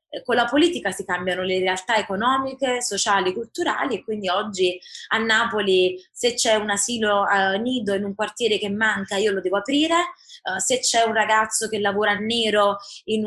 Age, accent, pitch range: 20-39, native, 195-235 Hz